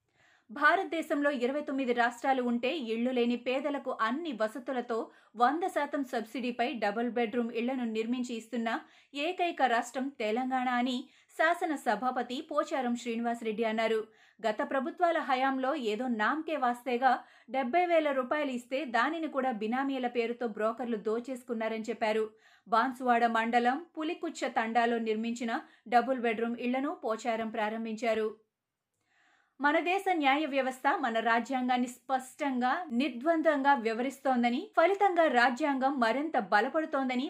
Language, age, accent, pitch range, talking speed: Telugu, 30-49, native, 235-285 Hz, 105 wpm